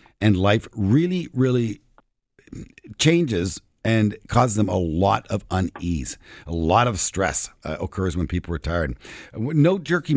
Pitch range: 85-125 Hz